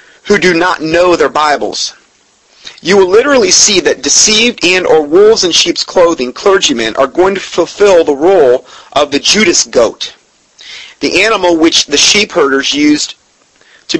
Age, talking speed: 30-49, 160 wpm